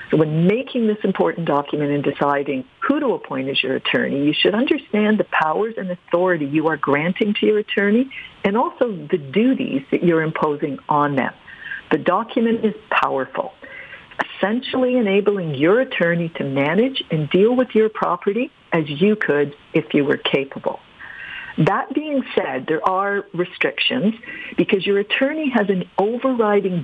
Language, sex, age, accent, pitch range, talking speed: English, female, 50-69, American, 160-225 Hz, 155 wpm